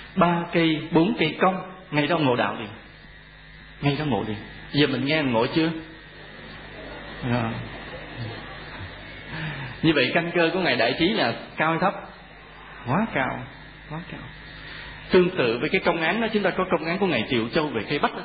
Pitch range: 125-165 Hz